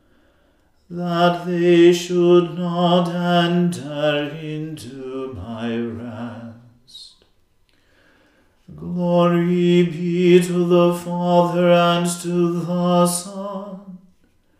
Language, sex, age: English, male, 40-59